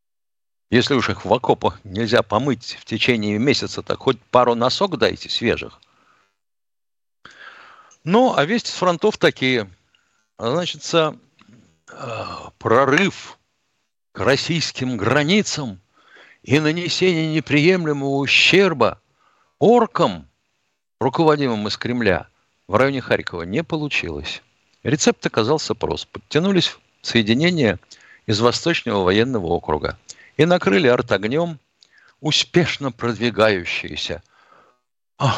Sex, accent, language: male, native, Russian